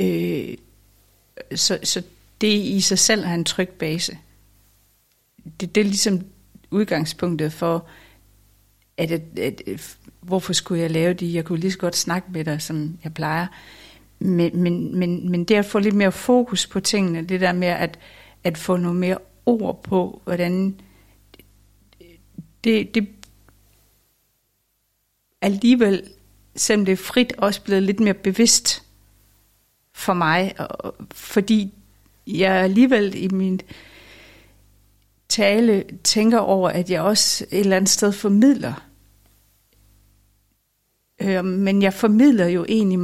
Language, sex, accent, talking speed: Danish, female, native, 125 wpm